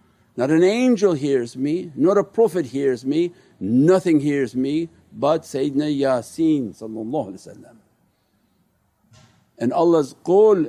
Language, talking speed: English, 105 wpm